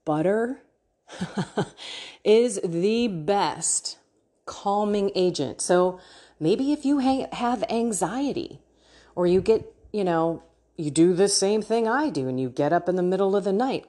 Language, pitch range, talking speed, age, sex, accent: English, 155-230 Hz, 145 wpm, 30-49, female, American